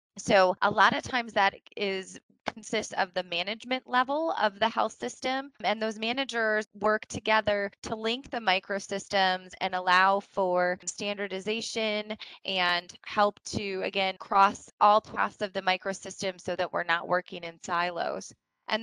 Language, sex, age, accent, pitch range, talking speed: English, female, 20-39, American, 185-220 Hz, 150 wpm